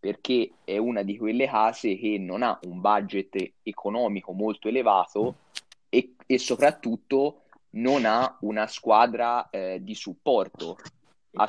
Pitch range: 100-120 Hz